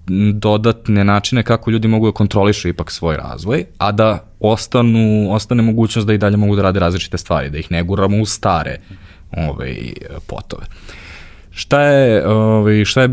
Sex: male